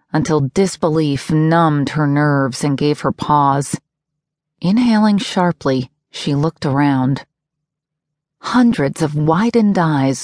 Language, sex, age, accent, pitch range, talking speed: English, female, 40-59, American, 145-180 Hz, 105 wpm